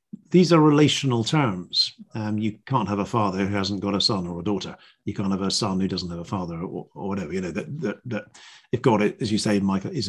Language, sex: English, male